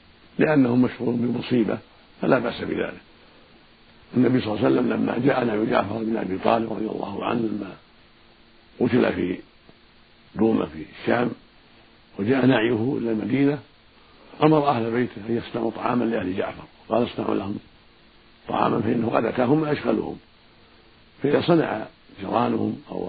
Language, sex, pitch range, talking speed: Arabic, male, 110-125 Hz, 130 wpm